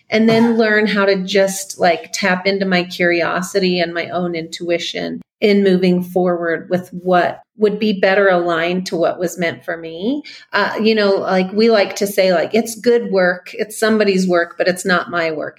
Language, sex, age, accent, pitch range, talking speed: English, female, 40-59, American, 175-210 Hz, 195 wpm